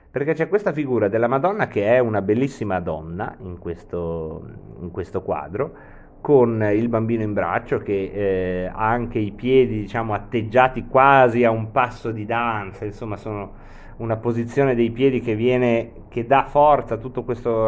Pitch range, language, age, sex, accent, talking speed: 100-125 Hz, Italian, 30-49, male, native, 165 wpm